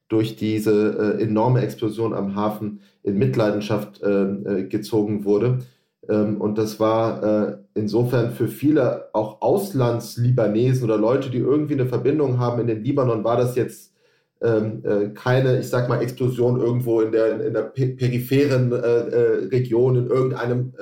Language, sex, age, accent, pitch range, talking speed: German, male, 30-49, German, 110-130 Hz, 130 wpm